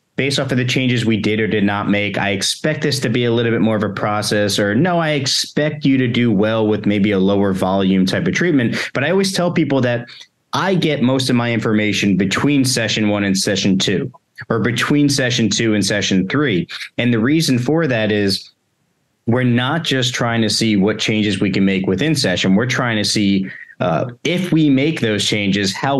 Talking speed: 215 wpm